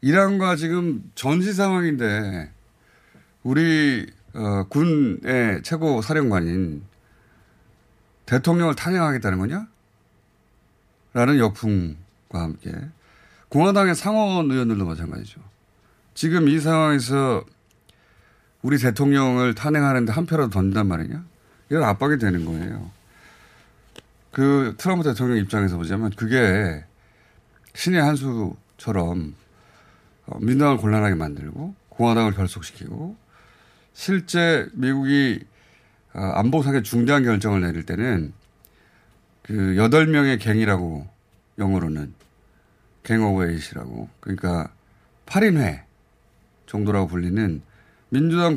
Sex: male